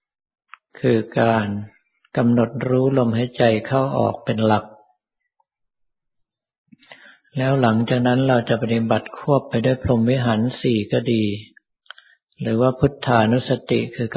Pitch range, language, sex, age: 110-125 Hz, Thai, male, 60-79